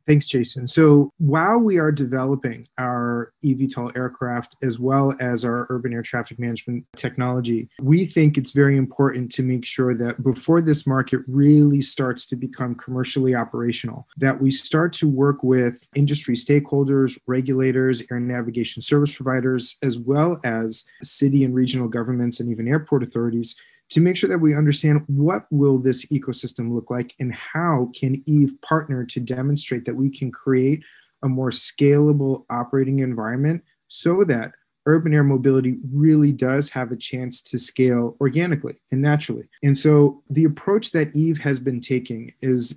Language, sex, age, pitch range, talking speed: English, male, 30-49, 125-145 Hz, 160 wpm